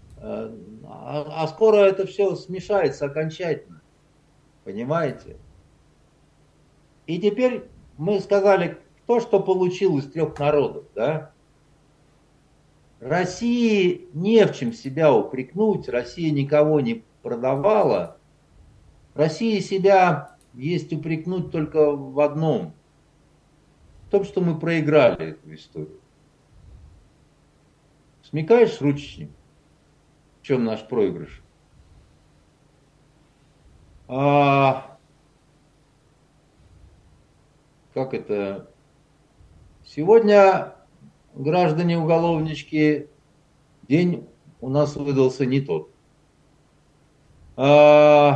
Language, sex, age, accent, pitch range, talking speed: Russian, male, 50-69, native, 140-175 Hz, 75 wpm